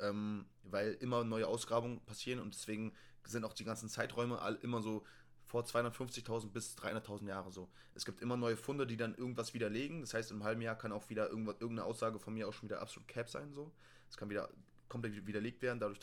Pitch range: 100-120 Hz